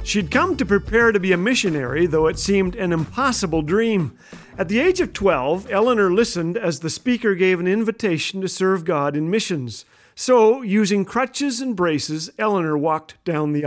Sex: male